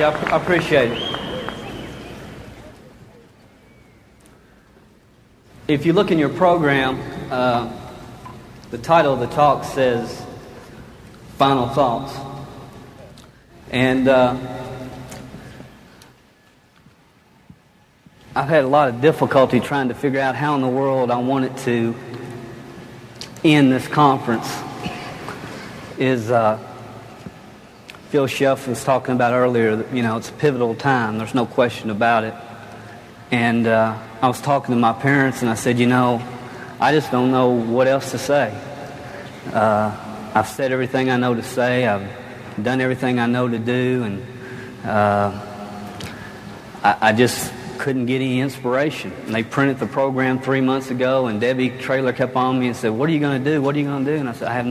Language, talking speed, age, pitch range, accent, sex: English, 150 wpm, 40-59, 120-135 Hz, American, male